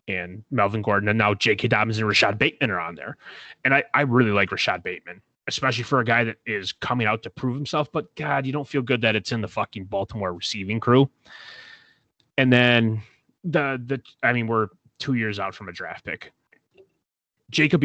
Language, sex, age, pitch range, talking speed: English, male, 30-49, 105-130 Hz, 200 wpm